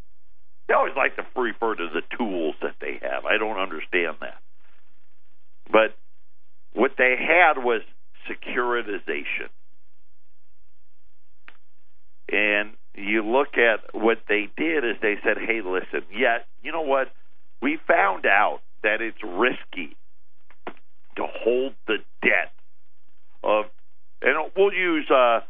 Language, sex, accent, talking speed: English, male, American, 125 wpm